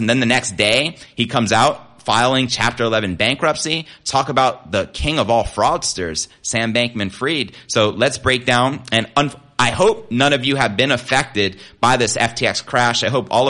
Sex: male